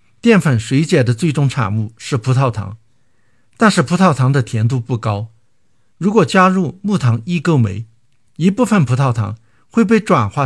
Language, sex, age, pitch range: Chinese, male, 50-69, 115-155 Hz